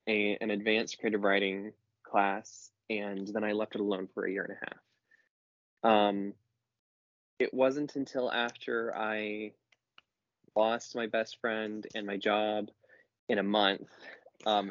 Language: English